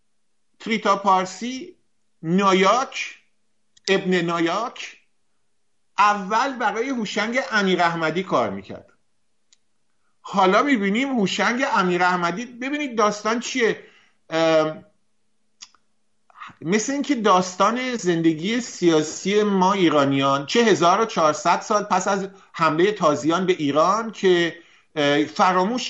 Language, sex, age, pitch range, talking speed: English, male, 50-69, 160-210 Hz, 95 wpm